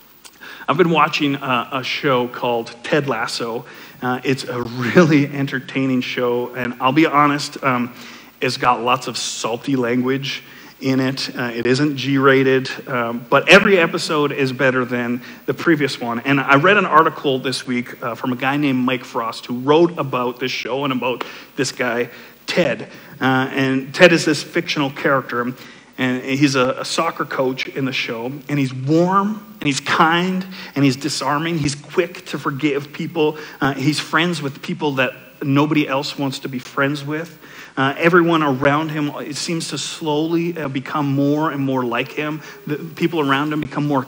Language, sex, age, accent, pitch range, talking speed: English, male, 40-59, American, 130-160 Hz, 175 wpm